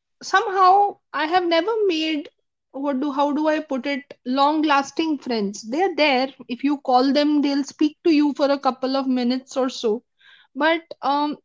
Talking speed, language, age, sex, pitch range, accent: 185 wpm, Hindi, 20-39, female, 255-310 Hz, native